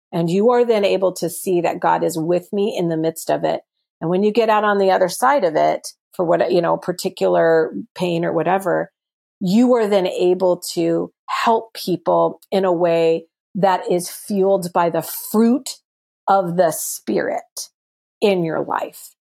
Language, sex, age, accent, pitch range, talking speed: English, female, 40-59, American, 175-215 Hz, 180 wpm